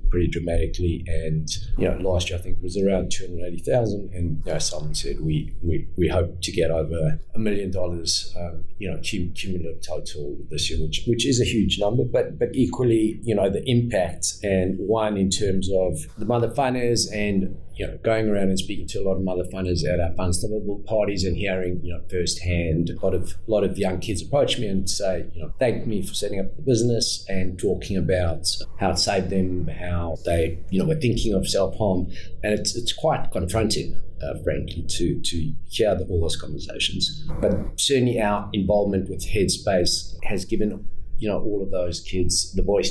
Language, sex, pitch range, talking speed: English, male, 85-100 Hz, 205 wpm